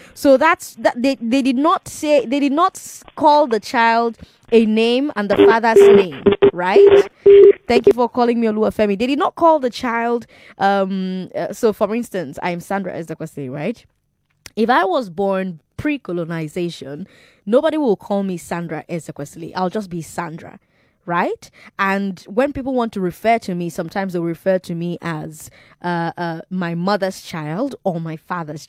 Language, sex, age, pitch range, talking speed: English, female, 20-39, 175-255 Hz, 170 wpm